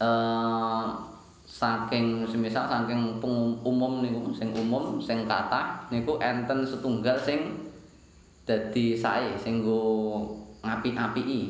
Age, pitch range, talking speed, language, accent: 20-39, 110-120 Hz, 105 wpm, Indonesian, native